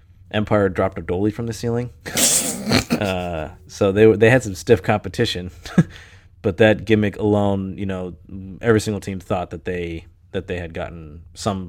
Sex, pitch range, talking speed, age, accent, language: male, 90-105 Hz, 170 wpm, 20-39, American, English